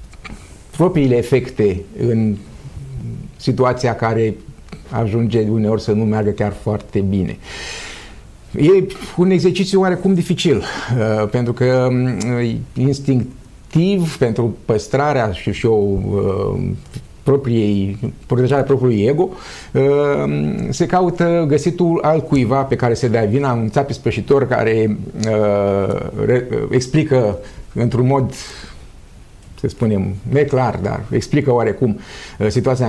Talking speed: 95 wpm